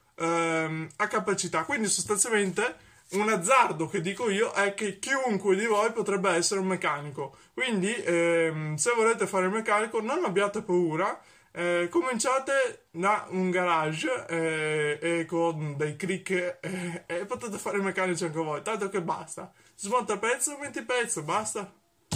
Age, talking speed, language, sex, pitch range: 20-39, 155 wpm, Italian, male, 170-210 Hz